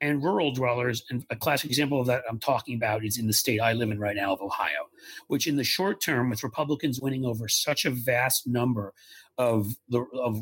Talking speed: 225 wpm